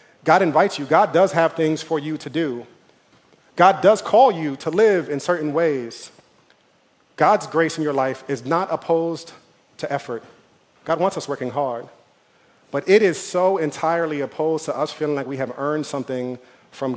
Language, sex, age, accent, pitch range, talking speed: English, male, 40-59, American, 135-165 Hz, 175 wpm